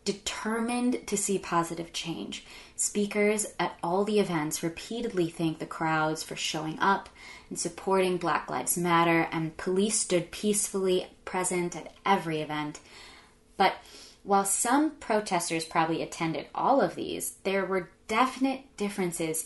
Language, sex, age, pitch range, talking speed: English, female, 20-39, 160-195 Hz, 135 wpm